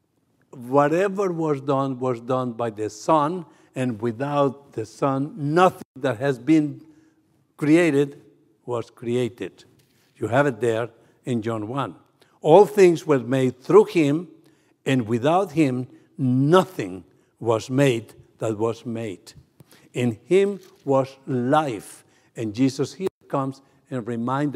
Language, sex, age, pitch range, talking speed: English, male, 60-79, 120-155 Hz, 125 wpm